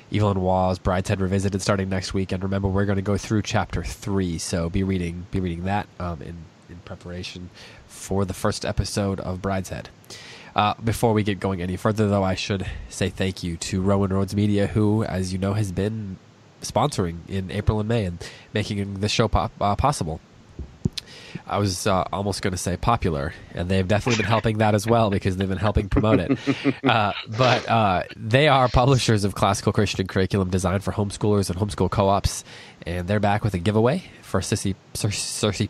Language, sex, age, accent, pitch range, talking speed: English, male, 20-39, American, 95-115 Hz, 190 wpm